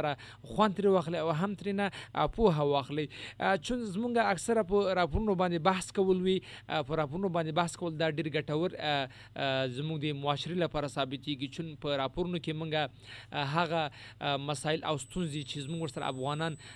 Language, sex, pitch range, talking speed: Urdu, male, 145-170 Hz, 160 wpm